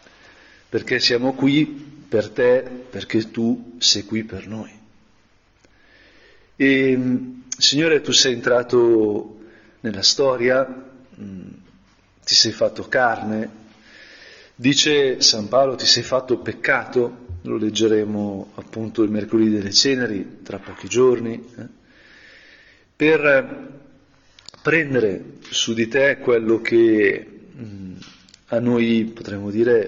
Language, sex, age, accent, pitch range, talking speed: Italian, male, 40-59, native, 110-130 Hz, 100 wpm